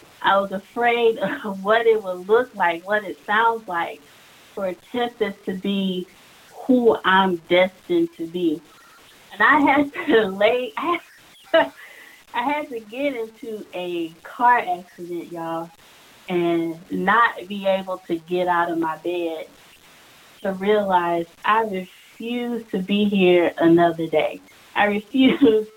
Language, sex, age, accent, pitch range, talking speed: English, female, 30-49, American, 175-225 Hz, 140 wpm